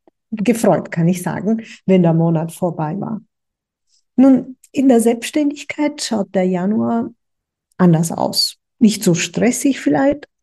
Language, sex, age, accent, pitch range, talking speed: German, female, 50-69, German, 175-225 Hz, 125 wpm